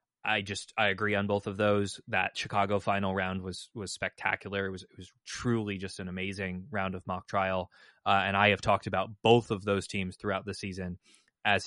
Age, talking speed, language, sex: 20-39, 210 wpm, English, male